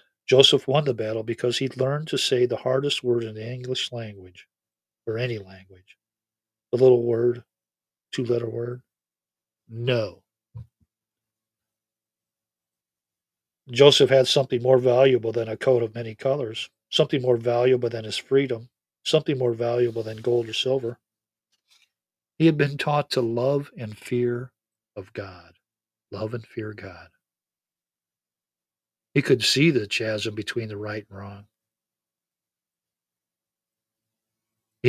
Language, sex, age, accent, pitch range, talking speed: English, male, 50-69, American, 110-135 Hz, 125 wpm